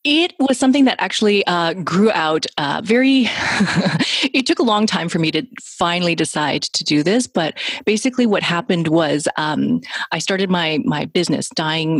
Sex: female